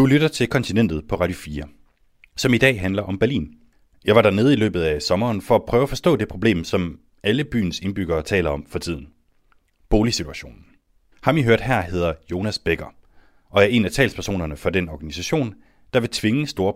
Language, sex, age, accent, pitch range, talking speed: Danish, male, 30-49, native, 85-130 Hz, 200 wpm